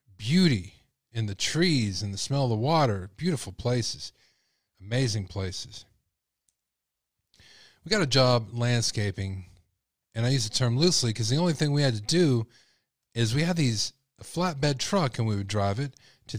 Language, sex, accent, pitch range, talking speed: English, male, American, 110-140 Hz, 165 wpm